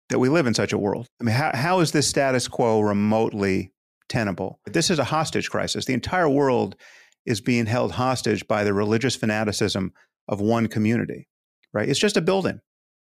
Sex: male